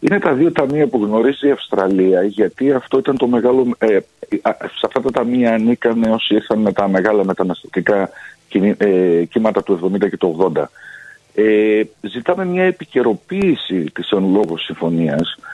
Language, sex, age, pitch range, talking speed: Greek, male, 50-69, 100-130 Hz, 160 wpm